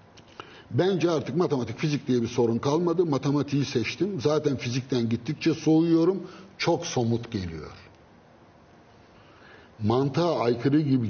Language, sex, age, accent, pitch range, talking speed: Turkish, male, 60-79, native, 110-145 Hz, 110 wpm